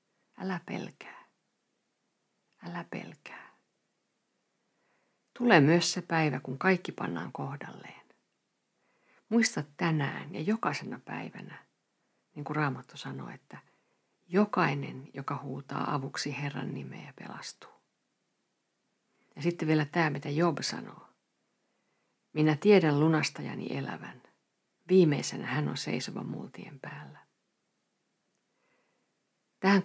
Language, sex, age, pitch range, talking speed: Finnish, female, 50-69, 130-175 Hz, 95 wpm